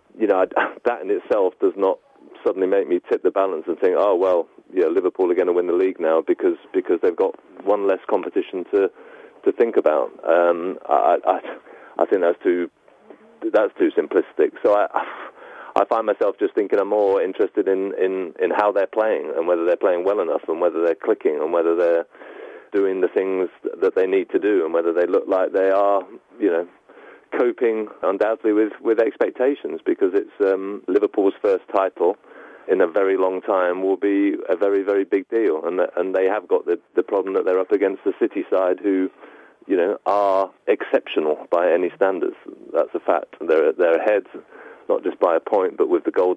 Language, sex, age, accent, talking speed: English, male, 30-49, British, 200 wpm